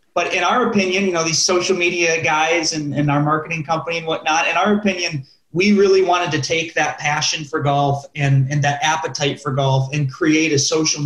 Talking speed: 210 wpm